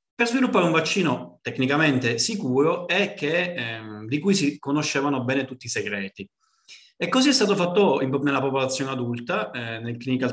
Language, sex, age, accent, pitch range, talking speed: Italian, male, 30-49, native, 120-170 Hz, 155 wpm